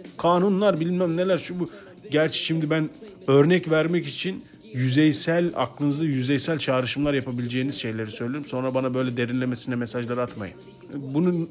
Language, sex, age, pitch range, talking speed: Turkish, male, 40-59, 125-170 Hz, 130 wpm